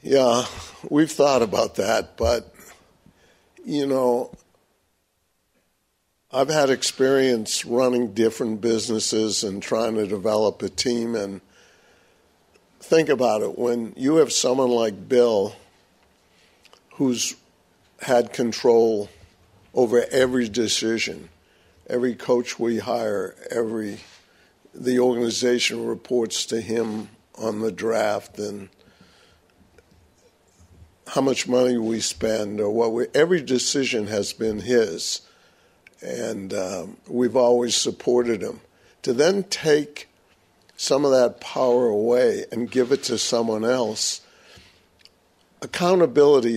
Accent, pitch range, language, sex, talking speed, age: American, 110-125 Hz, English, male, 110 wpm, 60-79